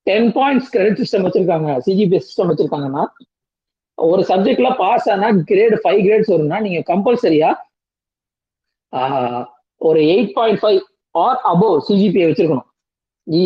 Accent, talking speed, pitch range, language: native, 120 wpm, 170-225 Hz, Tamil